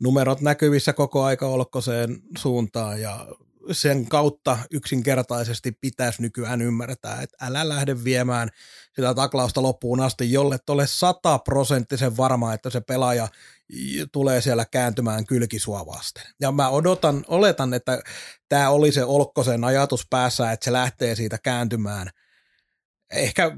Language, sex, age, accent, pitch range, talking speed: Finnish, male, 30-49, native, 120-145 Hz, 125 wpm